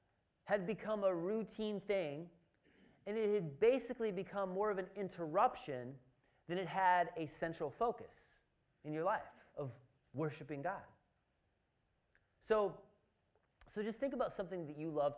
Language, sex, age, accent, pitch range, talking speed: English, male, 30-49, American, 135-180 Hz, 140 wpm